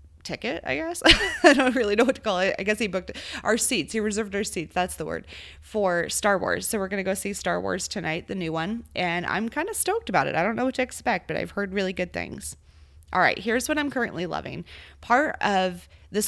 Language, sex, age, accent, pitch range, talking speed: English, female, 20-39, American, 165-220 Hz, 245 wpm